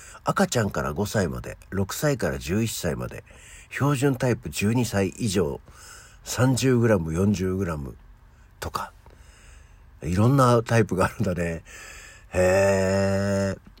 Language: Japanese